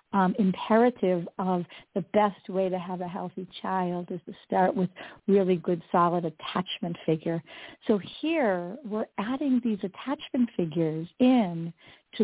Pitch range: 180-225 Hz